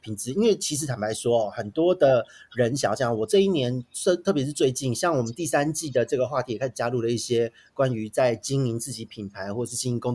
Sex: male